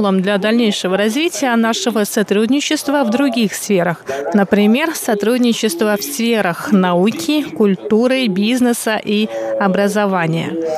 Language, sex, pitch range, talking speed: Russian, female, 195-255 Hz, 95 wpm